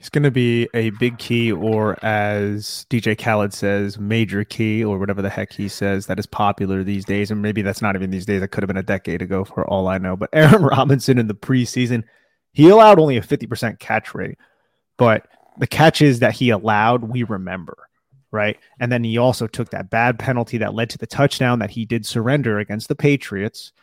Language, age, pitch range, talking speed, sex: English, 30-49, 105-125 Hz, 215 wpm, male